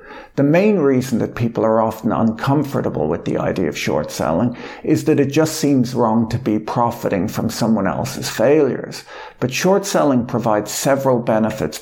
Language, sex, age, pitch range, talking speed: English, male, 50-69, 110-135 Hz, 170 wpm